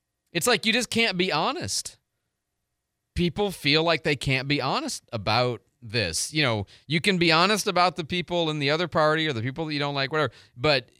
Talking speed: 205 wpm